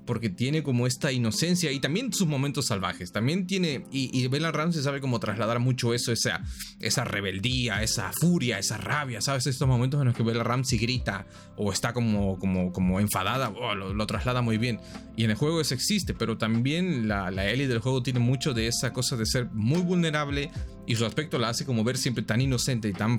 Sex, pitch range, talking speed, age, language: male, 105-135 Hz, 215 wpm, 30-49, Spanish